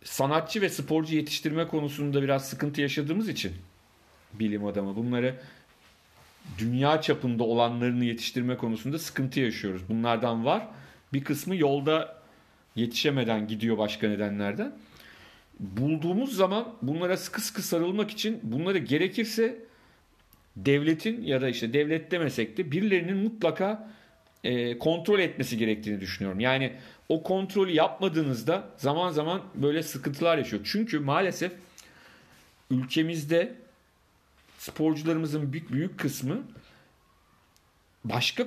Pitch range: 115-160 Hz